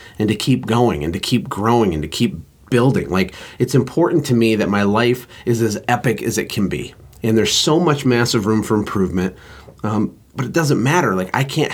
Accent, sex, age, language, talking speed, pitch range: American, male, 30-49, English, 220 wpm, 100-125 Hz